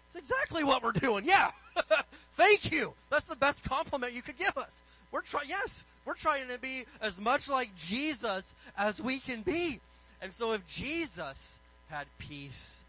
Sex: male